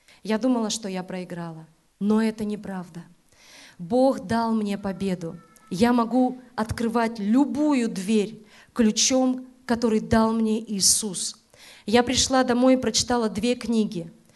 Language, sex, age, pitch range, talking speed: Russian, female, 30-49, 200-240 Hz, 120 wpm